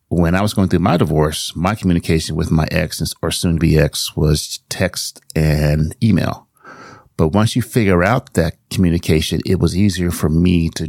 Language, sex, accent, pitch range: English, male, American, 80-95 Hz